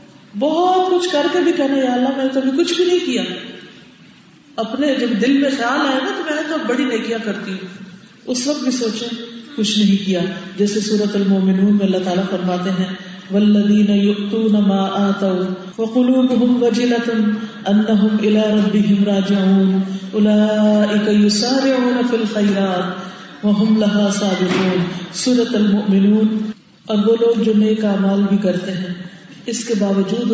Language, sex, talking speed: Urdu, female, 125 wpm